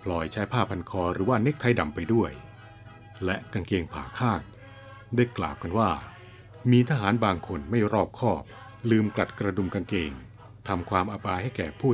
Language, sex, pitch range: Thai, male, 95-115 Hz